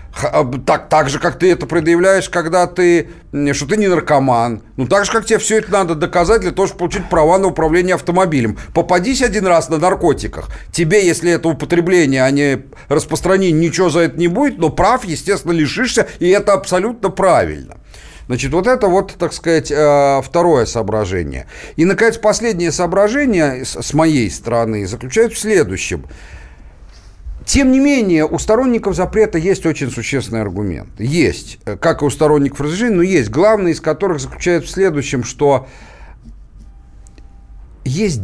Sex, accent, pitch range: male, native, 125-185 Hz